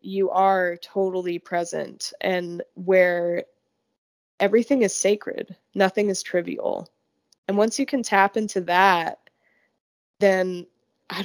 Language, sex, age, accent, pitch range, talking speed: English, female, 20-39, American, 180-220 Hz, 110 wpm